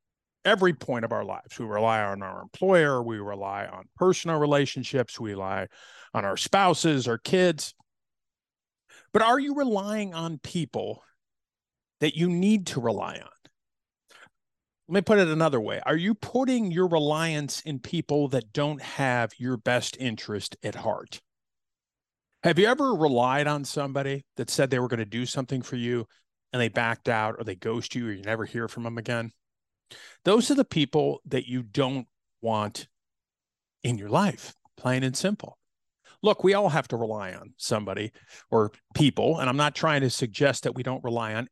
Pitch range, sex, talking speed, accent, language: 125-180 Hz, male, 175 wpm, American, English